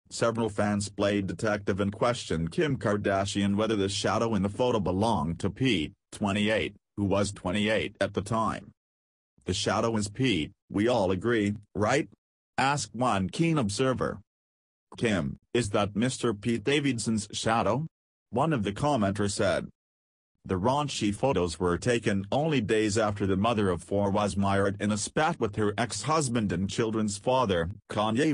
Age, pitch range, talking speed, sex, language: 40-59, 95-115 Hz, 155 wpm, male, English